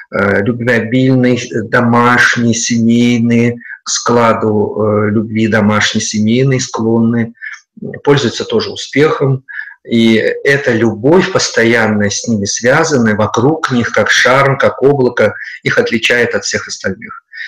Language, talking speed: Russian, 105 wpm